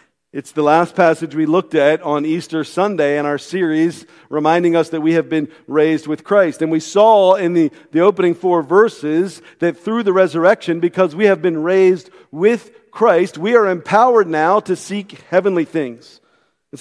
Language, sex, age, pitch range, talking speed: English, male, 50-69, 155-200 Hz, 180 wpm